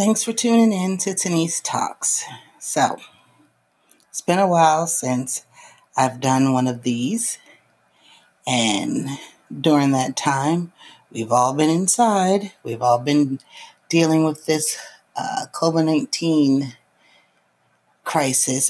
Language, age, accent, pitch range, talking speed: English, 40-59, American, 130-180 Hz, 110 wpm